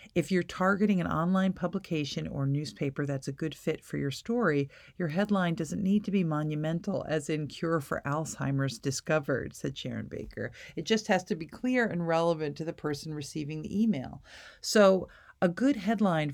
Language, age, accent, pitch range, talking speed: English, 50-69, American, 145-180 Hz, 180 wpm